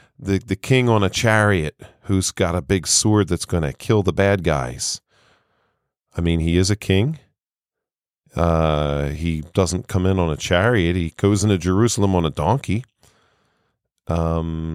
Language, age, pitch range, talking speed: English, 40-59, 90-105 Hz, 165 wpm